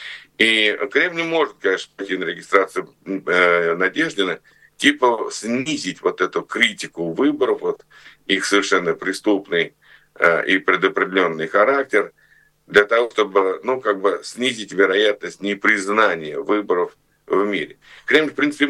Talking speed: 125 wpm